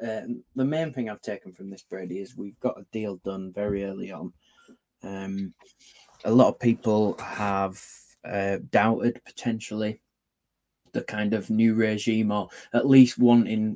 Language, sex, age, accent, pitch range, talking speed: English, male, 20-39, British, 100-115 Hz, 155 wpm